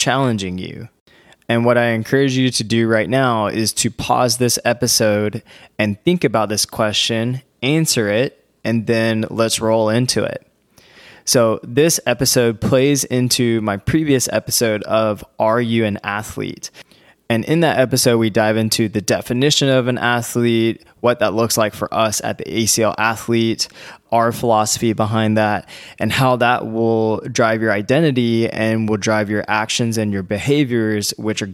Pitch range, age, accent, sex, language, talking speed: 105-125 Hz, 20-39, American, male, English, 160 wpm